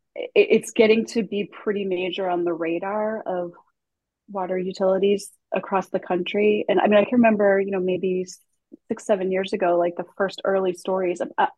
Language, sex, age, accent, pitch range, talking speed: English, female, 30-49, American, 180-215 Hz, 170 wpm